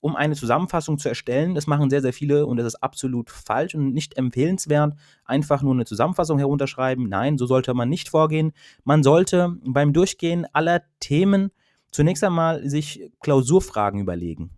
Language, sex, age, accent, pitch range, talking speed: German, male, 30-49, German, 130-160 Hz, 165 wpm